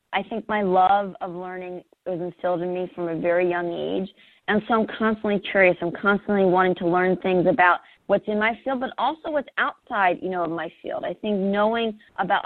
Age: 30-49